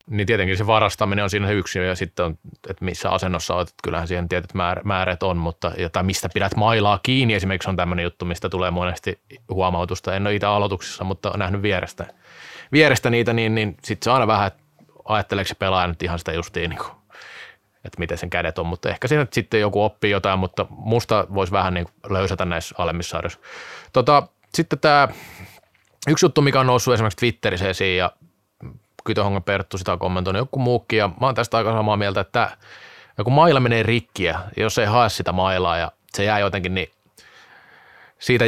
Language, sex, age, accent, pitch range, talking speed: Finnish, male, 20-39, native, 95-125 Hz, 180 wpm